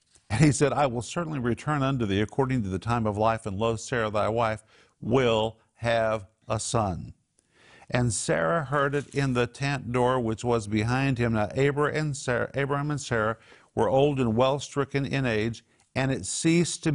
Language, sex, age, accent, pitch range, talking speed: English, male, 50-69, American, 110-140 Hz, 180 wpm